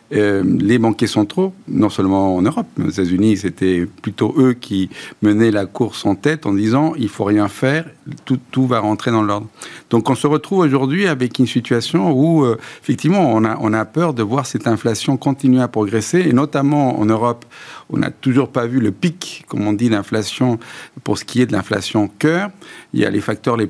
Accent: French